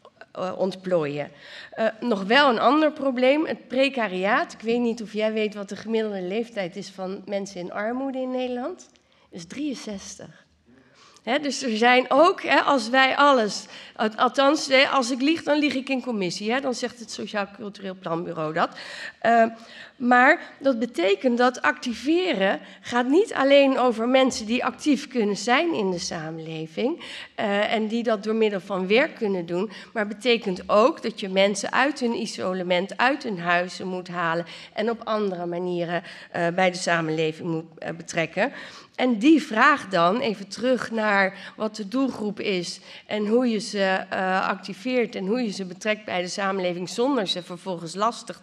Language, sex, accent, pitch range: Dutch, female, Dutch, 185-250 Hz